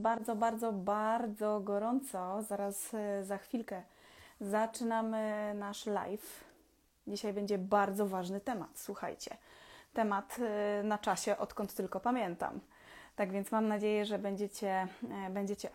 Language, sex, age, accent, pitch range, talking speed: Polish, female, 20-39, native, 205-240 Hz, 110 wpm